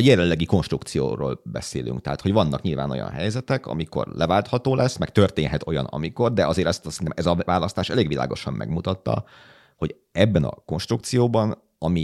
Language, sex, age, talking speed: Hungarian, male, 30-49, 160 wpm